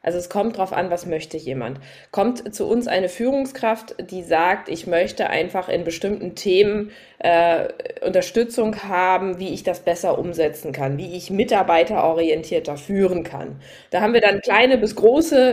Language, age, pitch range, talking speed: German, 20-39, 180-245 Hz, 160 wpm